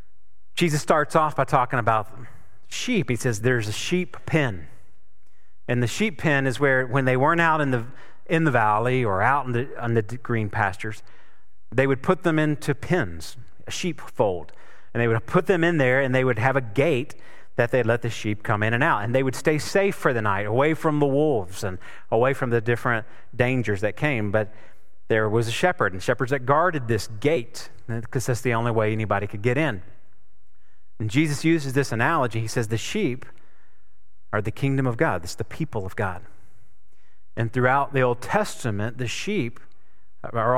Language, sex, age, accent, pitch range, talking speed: English, male, 30-49, American, 110-145 Hz, 200 wpm